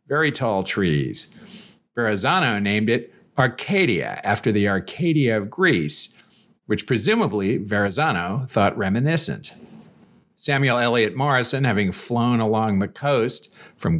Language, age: English, 50-69